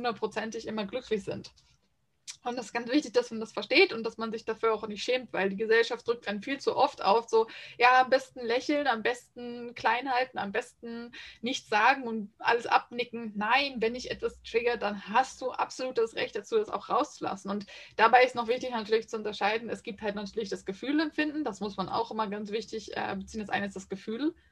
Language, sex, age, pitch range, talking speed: English, female, 20-39, 205-245 Hz, 215 wpm